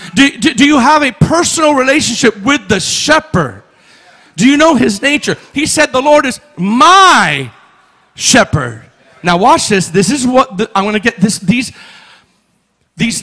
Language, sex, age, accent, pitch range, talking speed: English, male, 40-59, American, 165-240 Hz, 165 wpm